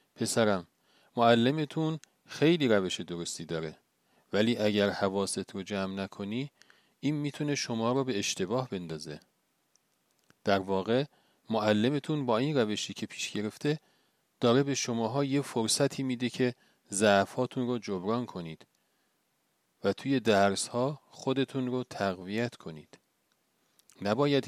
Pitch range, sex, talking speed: 100-130 Hz, male, 115 wpm